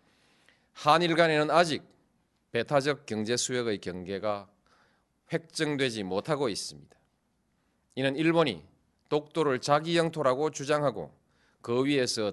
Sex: male